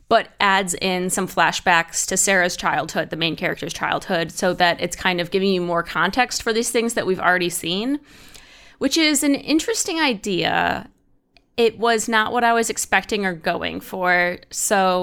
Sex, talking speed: female, 175 wpm